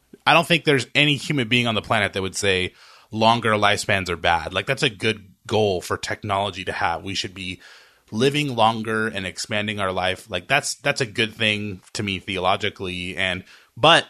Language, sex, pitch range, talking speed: English, male, 90-115 Hz, 195 wpm